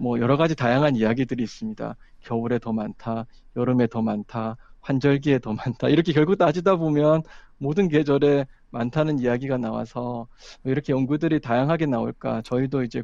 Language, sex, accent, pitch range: Korean, male, native, 130-175 Hz